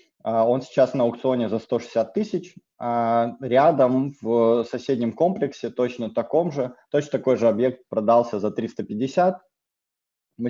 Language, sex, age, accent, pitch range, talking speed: Russian, male, 20-39, native, 105-130 Hz, 125 wpm